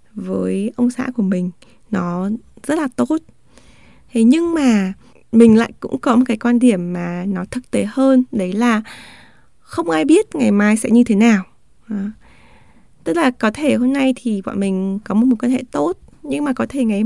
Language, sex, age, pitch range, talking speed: Vietnamese, female, 20-39, 215-270 Hz, 195 wpm